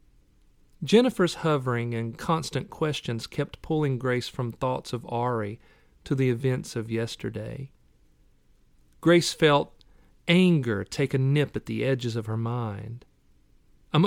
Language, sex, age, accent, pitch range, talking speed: English, male, 40-59, American, 115-145 Hz, 130 wpm